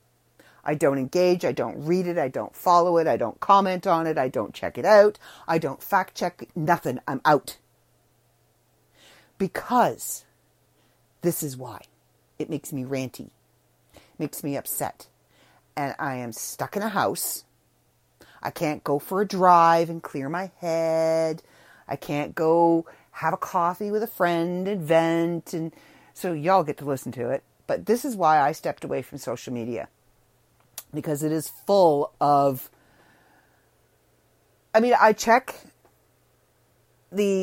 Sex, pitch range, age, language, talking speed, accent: female, 145-185 Hz, 50-69, English, 150 wpm, American